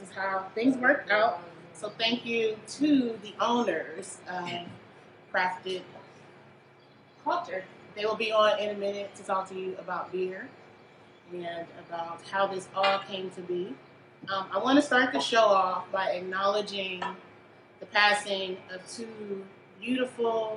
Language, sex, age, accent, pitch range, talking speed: English, female, 30-49, American, 185-215 Hz, 145 wpm